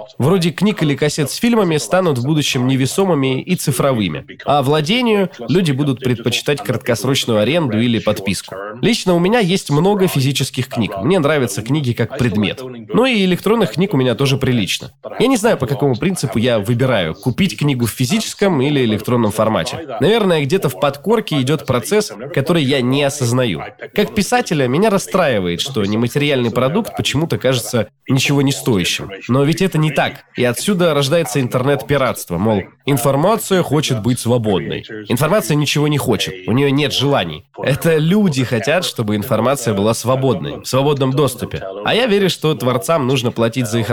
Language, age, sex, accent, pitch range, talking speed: Russian, 20-39, male, native, 120-165 Hz, 165 wpm